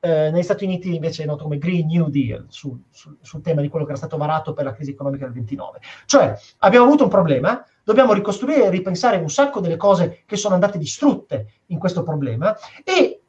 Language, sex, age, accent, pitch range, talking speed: Italian, male, 30-49, native, 160-215 Hz, 210 wpm